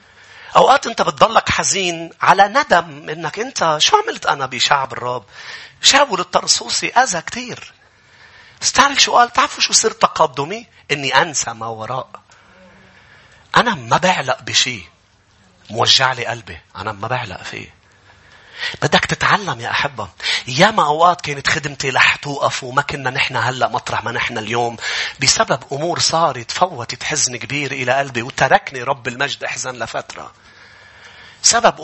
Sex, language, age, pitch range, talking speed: male, English, 40-59, 125-175 Hz, 135 wpm